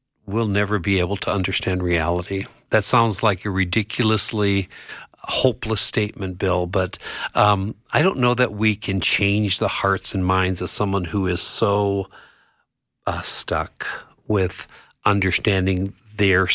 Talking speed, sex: 140 wpm, male